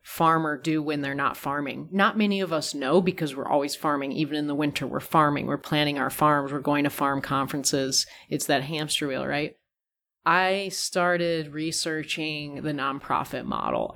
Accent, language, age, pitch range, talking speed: American, English, 30-49, 145-180 Hz, 175 wpm